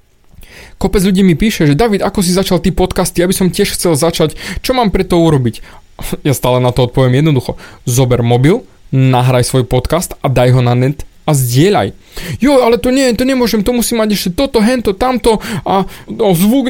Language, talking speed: Slovak, 200 wpm